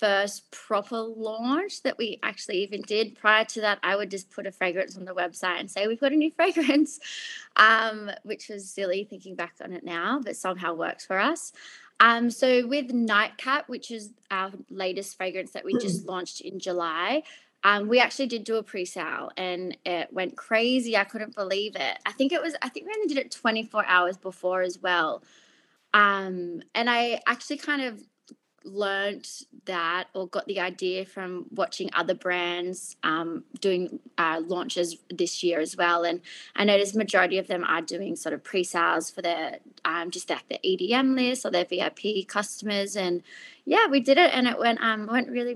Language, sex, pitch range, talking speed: English, female, 185-235 Hz, 190 wpm